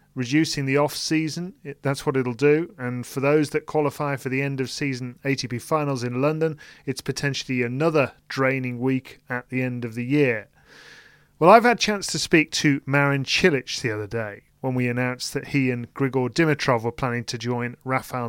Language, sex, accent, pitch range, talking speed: English, male, British, 125-150 Hz, 185 wpm